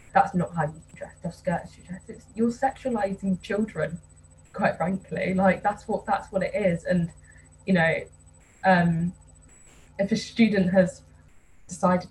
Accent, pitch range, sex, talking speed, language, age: British, 165-190 Hz, female, 155 wpm, English, 10-29